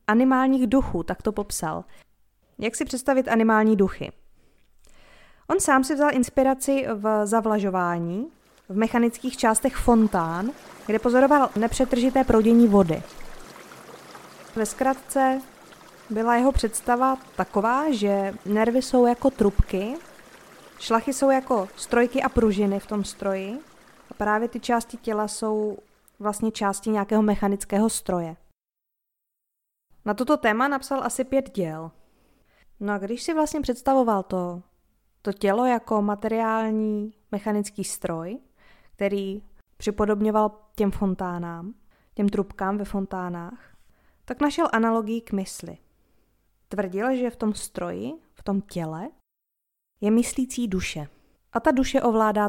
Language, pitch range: Czech, 200-245 Hz